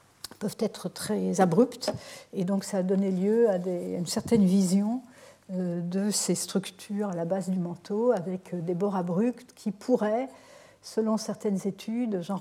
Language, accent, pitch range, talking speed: French, French, 185-220 Hz, 165 wpm